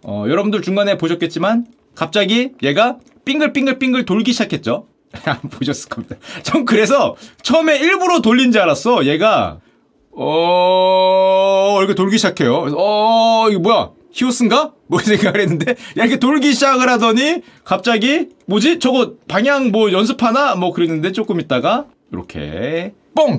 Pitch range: 210-285 Hz